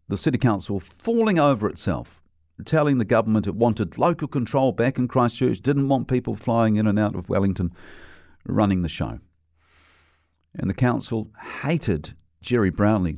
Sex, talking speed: male, 155 wpm